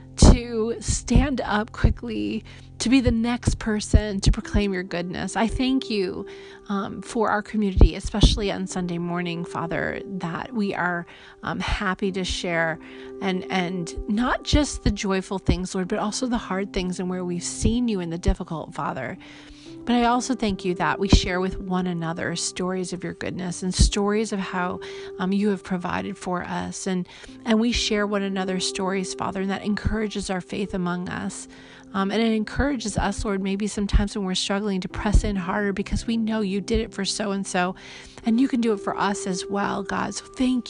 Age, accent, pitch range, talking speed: 30-49, American, 185-220 Hz, 190 wpm